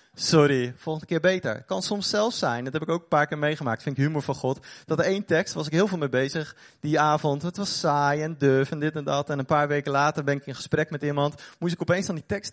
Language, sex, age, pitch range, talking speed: Dutch, male, 30-49, 145-190 Hz, 285 wpm